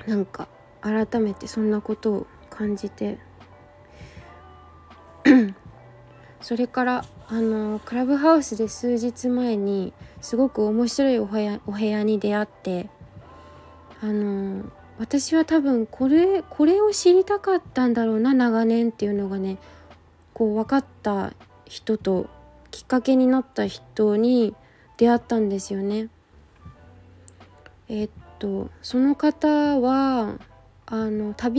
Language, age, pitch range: Japanese, 20-39, 190-250 Hz